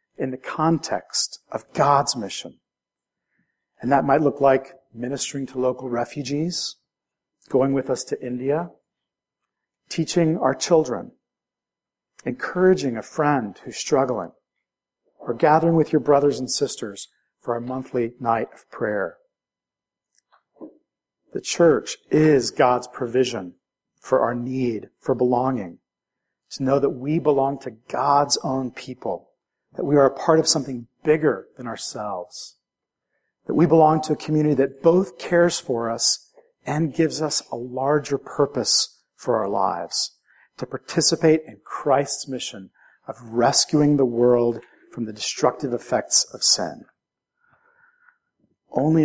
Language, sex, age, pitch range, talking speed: English, male, 50-69, 125-155 Hz, 130 wpm